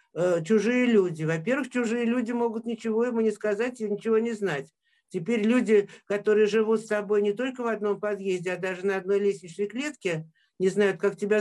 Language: Russian